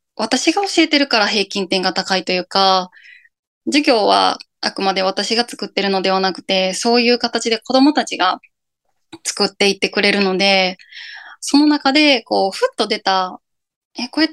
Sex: female